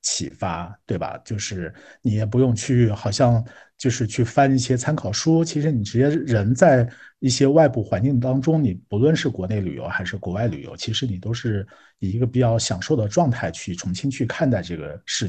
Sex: male